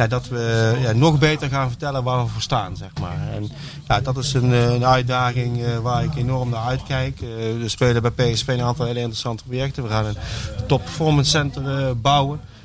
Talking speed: 215 wpm